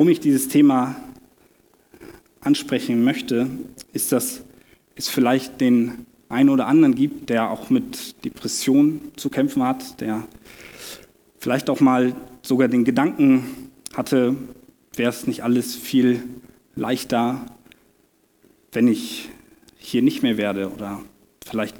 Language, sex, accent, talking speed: German, male, German, 120 wpm